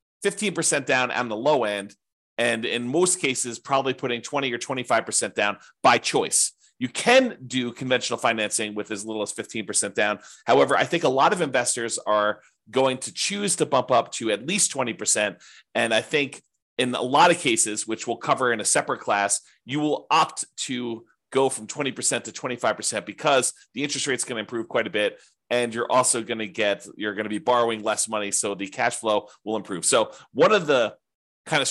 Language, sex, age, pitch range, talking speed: English, male, 30-49, 105-135 Hz, 200 wpm